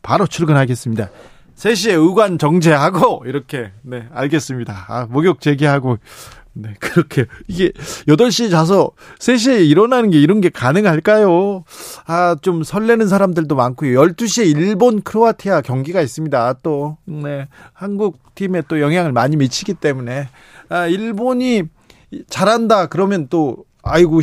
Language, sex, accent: Korean, male, native